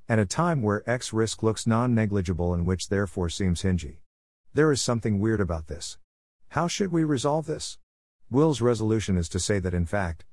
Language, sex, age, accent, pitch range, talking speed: English, male, 50-69, American, 90-115 Hz, 185 wpm